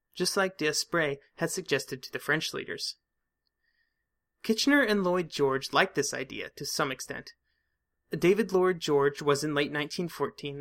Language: English